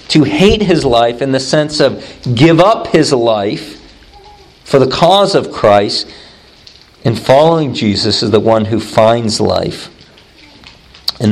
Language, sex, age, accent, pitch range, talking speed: English, male, 50-69, American, 120-175 Hz, 145 wpm